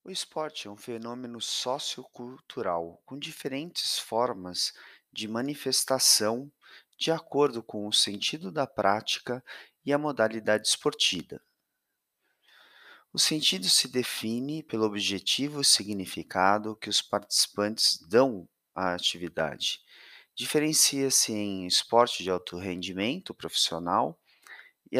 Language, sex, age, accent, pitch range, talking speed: Portuguese, male, 30-49, Brazilian, 100-140 Hz, 105 wpm